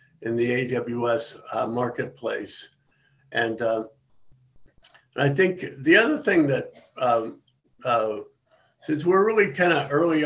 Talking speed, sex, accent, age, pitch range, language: 125 wpm, male, American, 50-69, 115-135 Hz, English